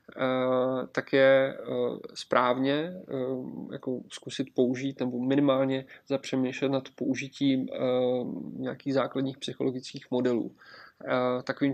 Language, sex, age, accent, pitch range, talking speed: Czech, male, 20-39, native, 130-135 Hz, 80 wpm